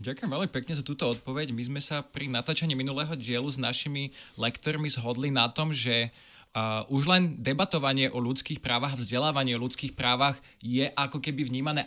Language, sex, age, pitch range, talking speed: Slovak, male, 20-39, 130-155 Hz, 175 wpm